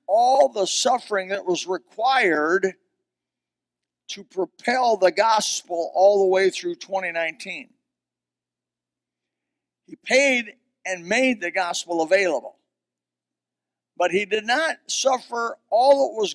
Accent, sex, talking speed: American, male, 110 wpm